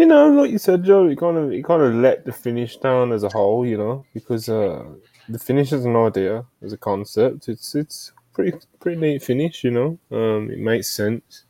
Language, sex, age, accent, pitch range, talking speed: English, male, 10-29, British, 105-125 Hz, 225 wpm